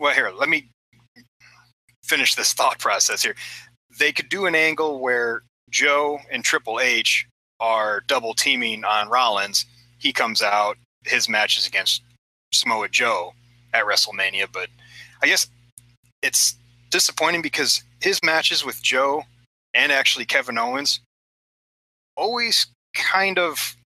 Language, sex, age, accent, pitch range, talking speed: English, male, 30-49, American, 110-130 Hz, 130 wpm